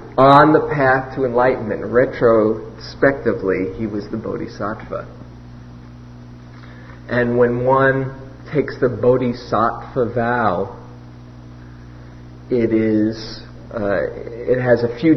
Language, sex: English, male